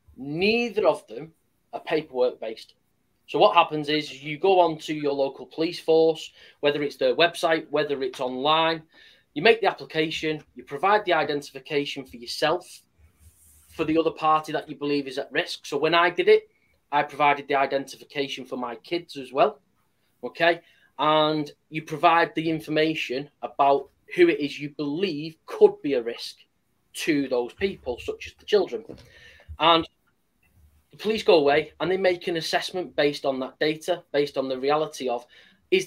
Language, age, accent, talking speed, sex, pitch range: English, 30-49, British, 170 wpm, male, 135-170 Hz